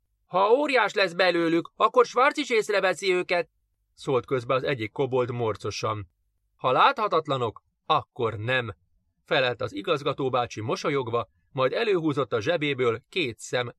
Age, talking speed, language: 30-49, 125 wpm, Hungarian